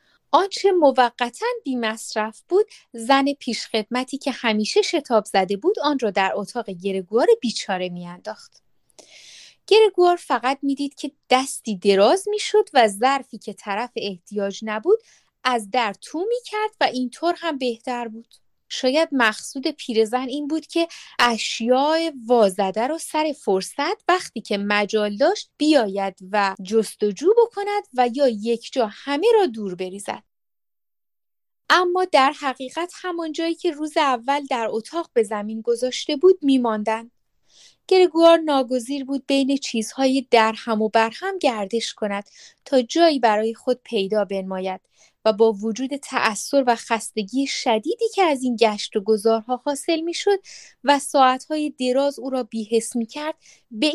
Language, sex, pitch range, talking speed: Persian, female, 220-310 Hz, 140 wpm